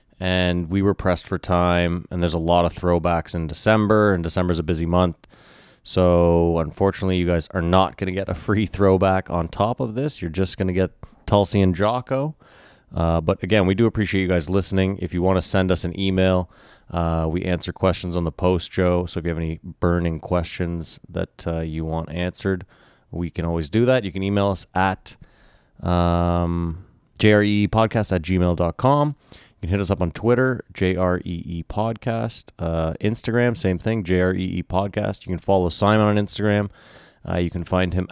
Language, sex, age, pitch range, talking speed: English, male, 30-49, 85-100 Hz, 190 wpm